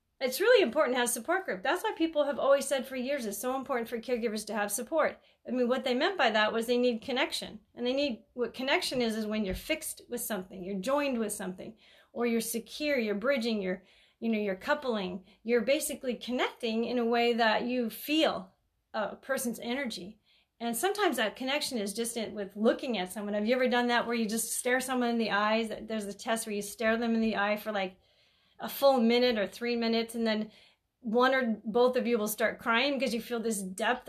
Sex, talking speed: female, 225 wpm